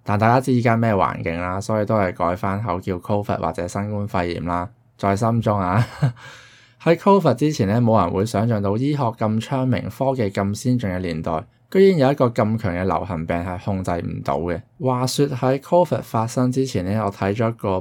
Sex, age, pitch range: male, 20-39, 95-125 Hz